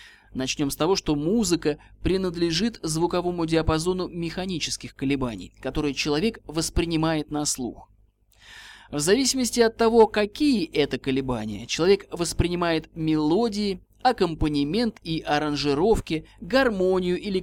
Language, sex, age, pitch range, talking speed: Russian, male, 20-39, 135-185 Hz, 105 wpm